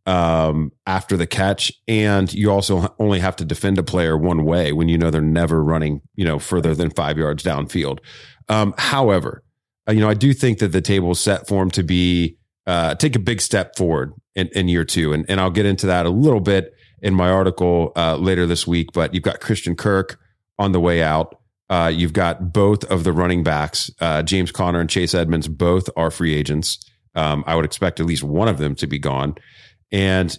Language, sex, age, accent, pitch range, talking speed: English, male, 30-49, American, 80-100 Hz, 215 wpm